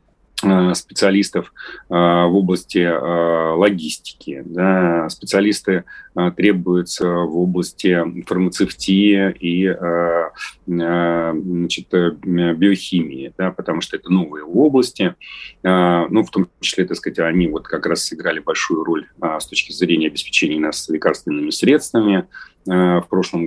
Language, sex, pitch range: Russian, male, 85-95 Hz